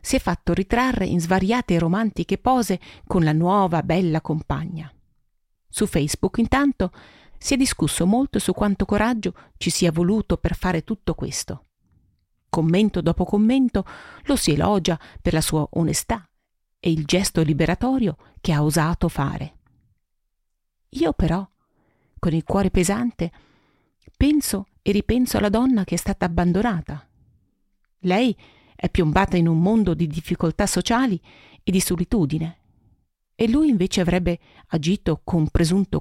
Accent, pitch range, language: native, 160-205 Hz, Italian